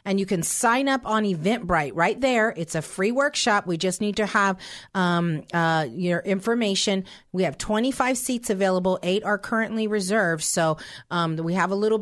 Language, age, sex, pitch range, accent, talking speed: English, 40-59, female, 165-200 Hz, American, 185 wpm